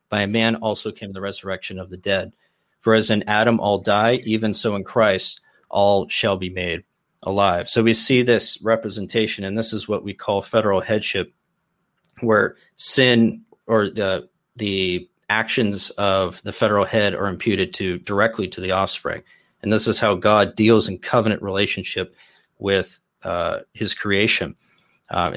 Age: 30-49